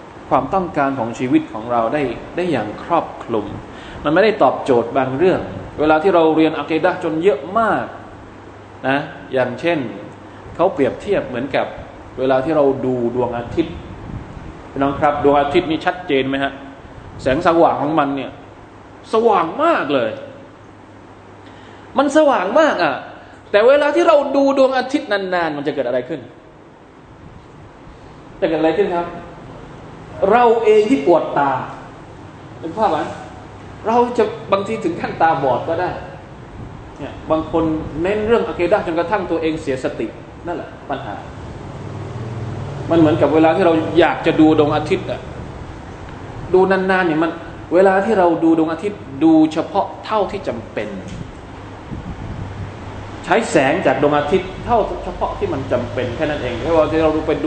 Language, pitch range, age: Thai, 130-185 Hz, 20-39